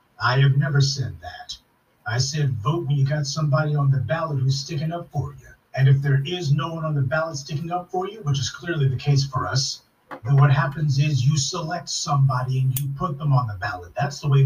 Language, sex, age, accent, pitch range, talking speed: English, male, 40-59, American, 135-155 Hz, 235 wpm